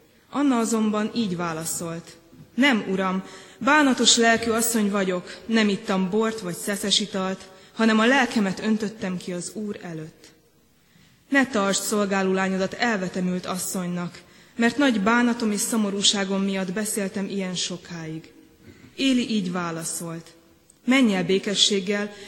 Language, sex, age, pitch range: Hungarian, female, 20-39, 180-220 Hz